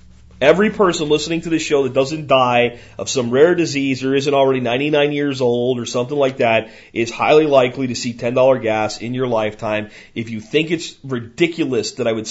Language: French